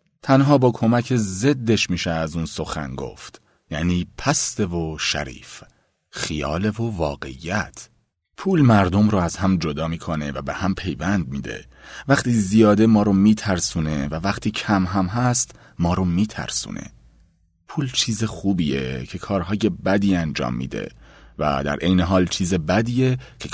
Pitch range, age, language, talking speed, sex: 80-110 Hz, 30-49, Persian, 145 wpm, male